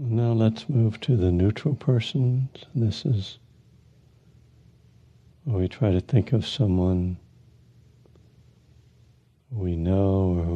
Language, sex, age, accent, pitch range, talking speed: English, male, 60-79, American, 95-120 Hz, 110 wpm